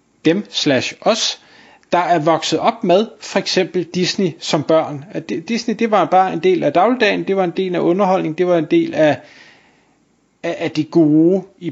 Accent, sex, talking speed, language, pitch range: native, male, 185 wpm, Danish, 155-200 Hz